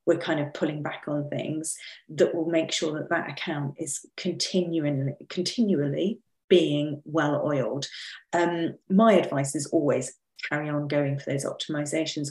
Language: English